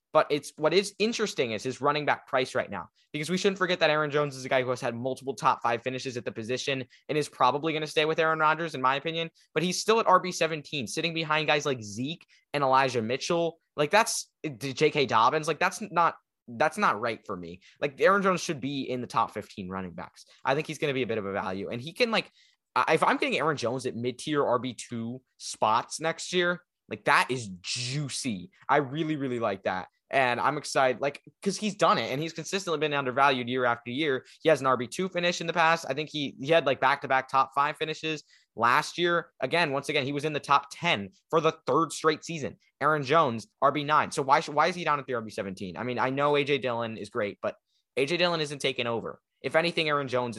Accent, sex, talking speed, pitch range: American, male, 235 wpm, 130-165 Hz